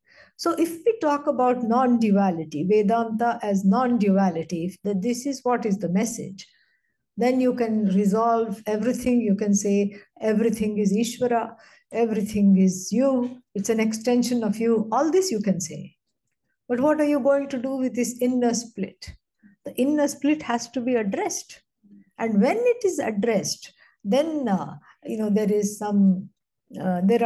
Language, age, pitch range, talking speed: English, 60-79, 200-255 Hz, 145 wpm